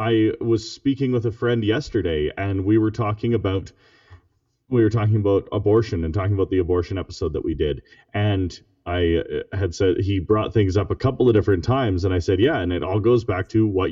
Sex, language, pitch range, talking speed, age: male, English, 100-135 Hz, 215 wpm, 30-49